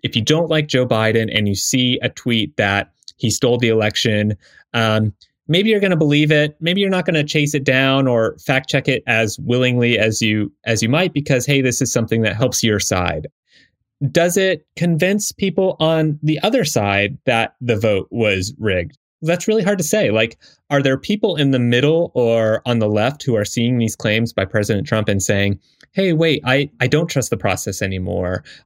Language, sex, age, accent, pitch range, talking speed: English, male, 30-49, American, 105-145 Hz, 205 wpm